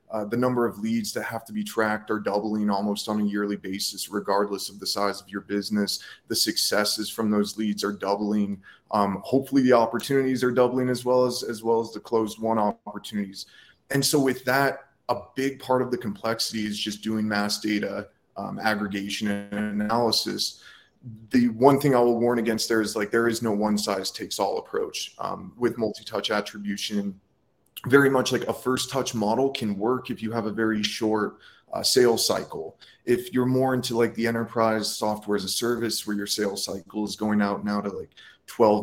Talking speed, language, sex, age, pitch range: 200 wpm, English, male, 20-39, 105-120 Hz